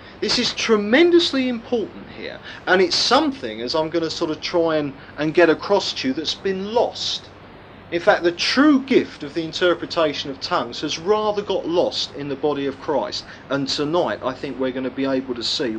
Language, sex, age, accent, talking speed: English, male, 40-59, British, 205 wpm